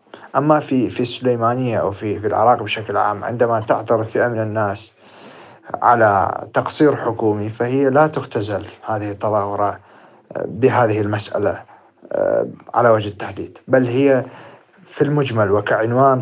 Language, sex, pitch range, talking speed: Arabic, male, 105-130 Hz, 120 wpm